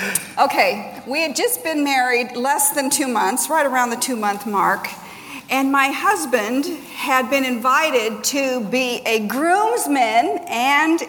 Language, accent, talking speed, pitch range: English, American, 140 wpm, 250-320 Hz